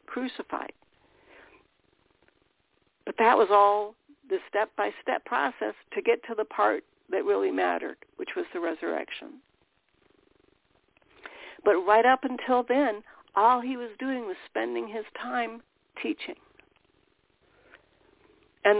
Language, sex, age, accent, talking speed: English, female, 60-79, American, 110 wpm